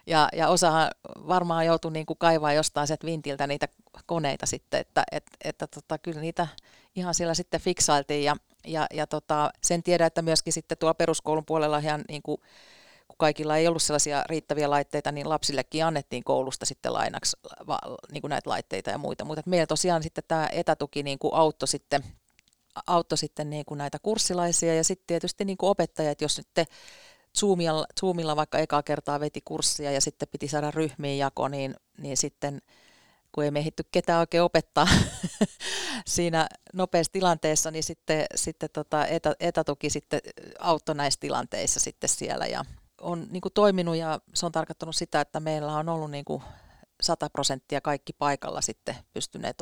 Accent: native